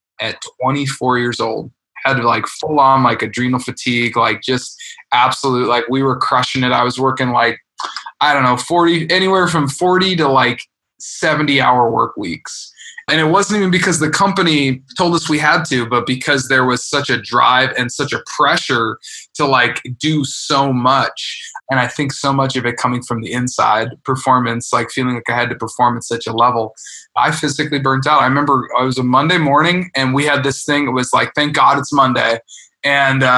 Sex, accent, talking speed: male, American, 200 wpm